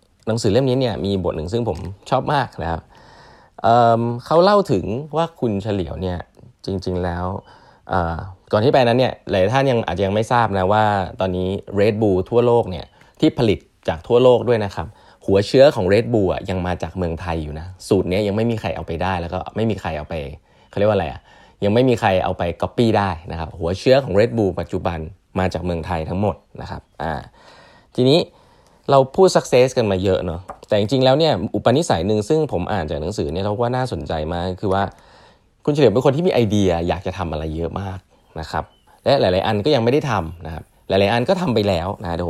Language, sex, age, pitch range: Thai, male, 20-39, 90-120 Hz